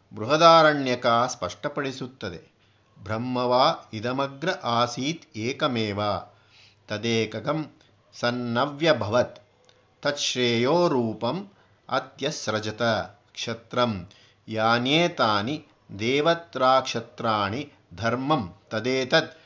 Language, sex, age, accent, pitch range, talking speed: Kannada, male, 50-69, native, 115-150 Hz, 35 wpm